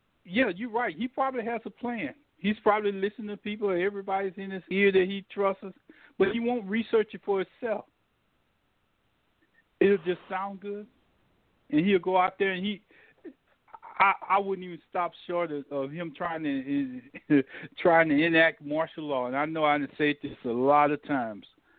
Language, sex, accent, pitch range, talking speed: English, male, American, 155-200 Hz, 175 wpm